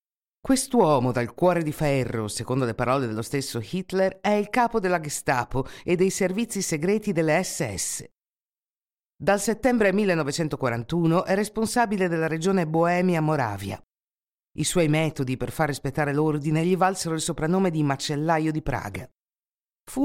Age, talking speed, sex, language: 50-69, 140 wpm, female, Italian